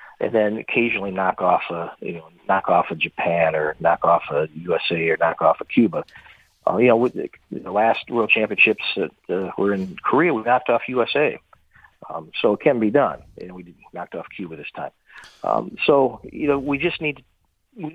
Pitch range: 95-130 Hz